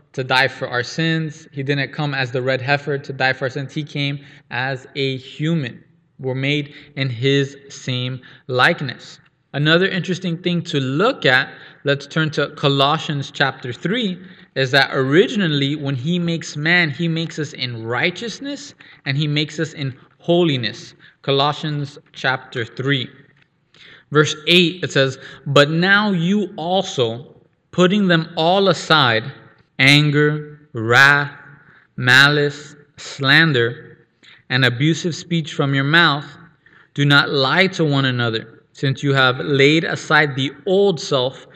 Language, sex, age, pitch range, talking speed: English, male, 20-39, 135-160 Hz, 140 wpm